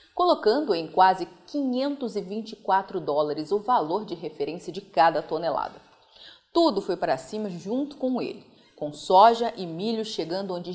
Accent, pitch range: Brazilian, 175-250 Hz